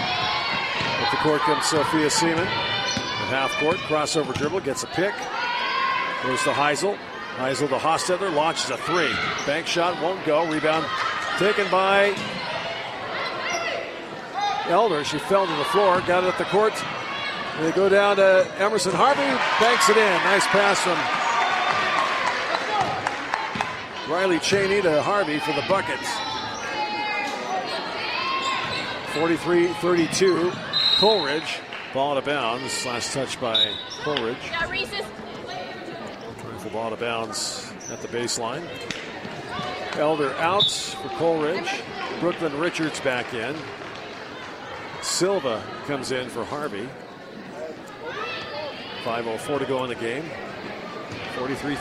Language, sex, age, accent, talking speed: English, male, 50-69, American, 110 wpm